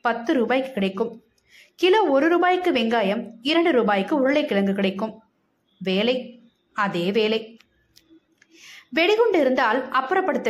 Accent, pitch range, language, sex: native, 220-305 Hz, Tamil, female